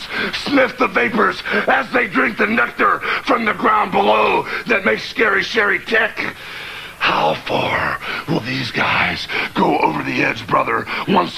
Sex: male